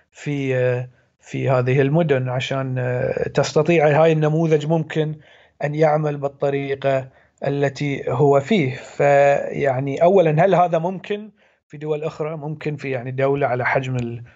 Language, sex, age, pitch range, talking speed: Arabic, male, 40-59, 135-160 Hz, 125 wpm